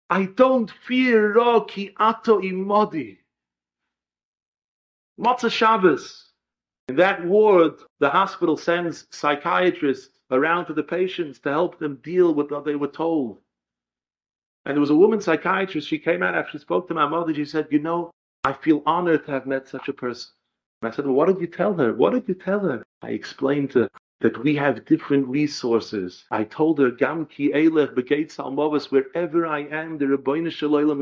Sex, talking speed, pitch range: male, 175 wpm, 135-190 Hz